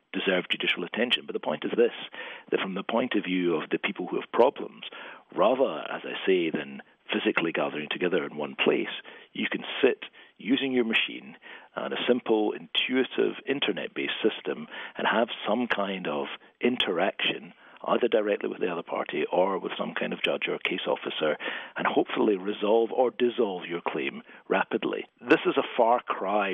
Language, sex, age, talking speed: English, male, 50-69, 175 wpm